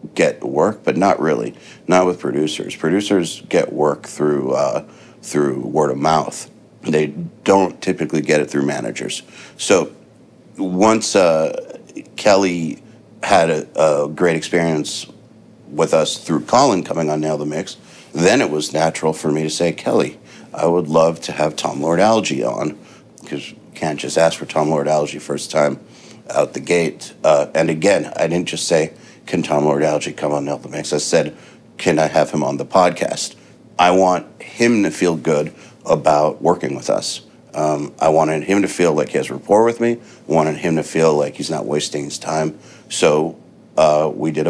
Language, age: English, 60-79